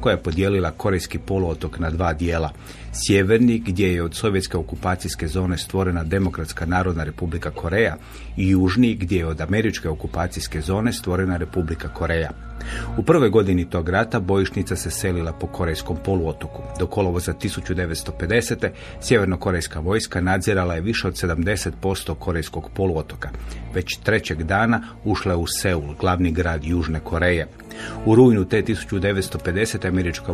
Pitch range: 85-100 Hz